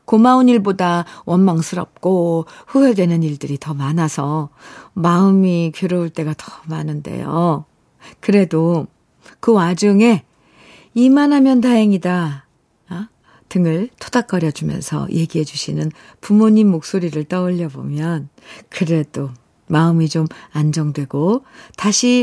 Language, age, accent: Korean, 50-69, native